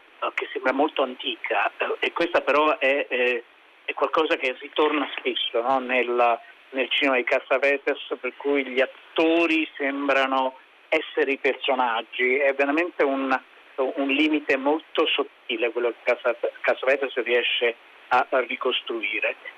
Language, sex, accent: Italian, male, native